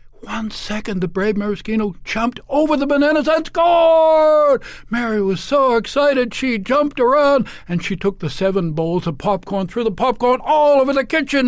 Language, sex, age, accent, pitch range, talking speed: English, male, 60-79, American, 140-220 Hz, 175 wpm